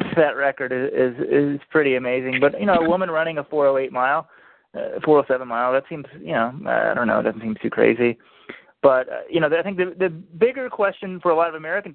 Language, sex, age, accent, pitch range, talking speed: English, male, 30-49, American, 130-160 Hz, 230 wpm